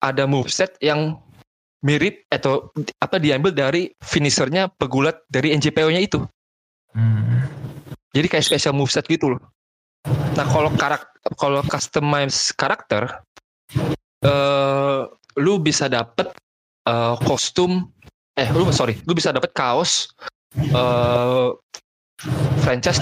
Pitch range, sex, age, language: 125-155 Hz, male, 20-39, Indonesian